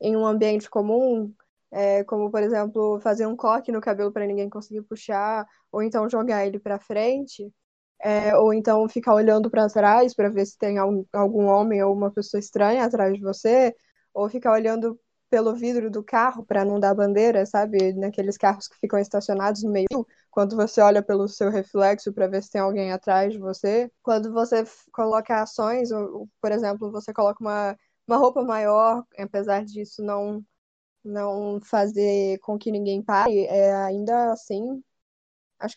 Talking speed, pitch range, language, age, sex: 175 wpm, 200-230 Hz, Portuguese, 10-29, female